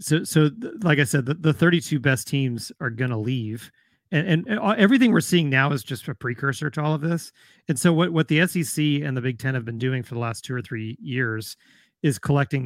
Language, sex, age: English, male, 30-49